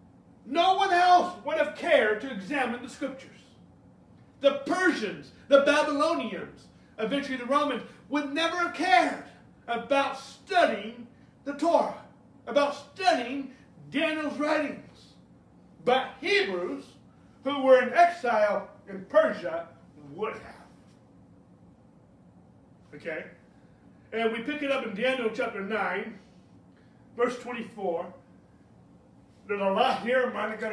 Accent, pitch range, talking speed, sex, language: American, 195-275 Hz, 115 wpm, male, English